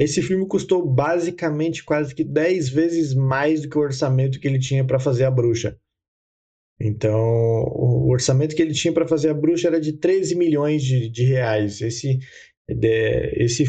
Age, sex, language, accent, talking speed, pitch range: 20-39, male, Portuguese, Brazilian, 170 wpm, 115-150 Hz